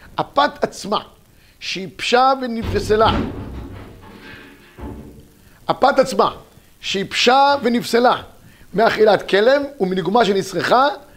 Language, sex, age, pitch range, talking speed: Hebrew, male, 50-69, 175-250 Hz, 65 wpm